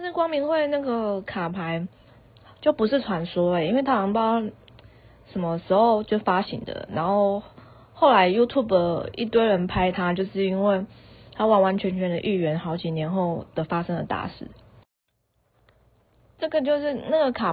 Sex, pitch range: female, 165-205 Hz